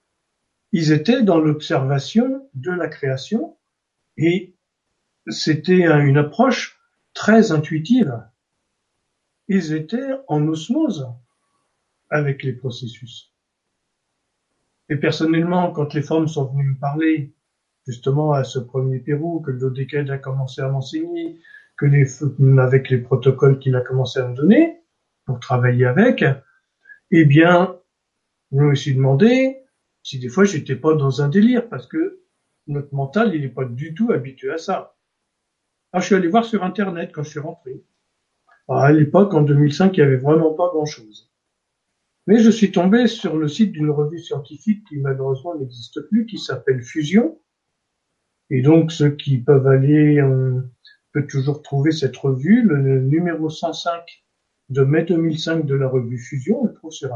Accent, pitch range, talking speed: French, 135-180 Hz, 155 wpm